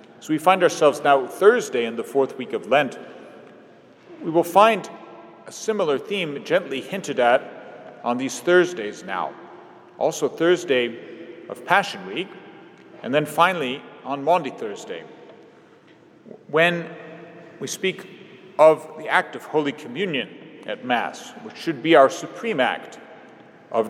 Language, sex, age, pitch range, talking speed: English, male, 40-59, 135-180 Hz, 135 wpm